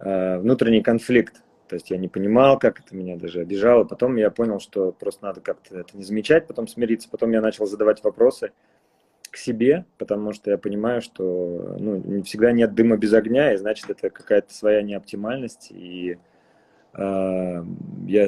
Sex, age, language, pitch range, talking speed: male, 20-39, Russian, 95-115 Hz, 165 wpm